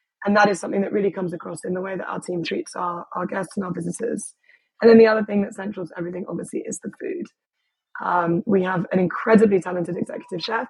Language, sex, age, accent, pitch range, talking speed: English, female, 20-39, British, 185-220 Hz, 230 wpm